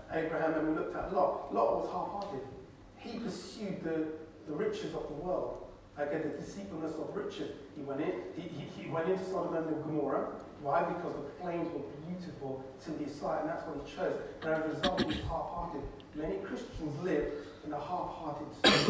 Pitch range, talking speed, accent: 145-195 Hz, 195 wpm, British